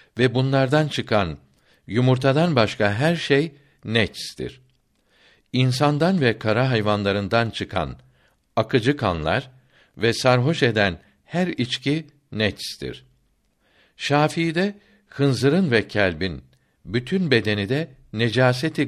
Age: 60-79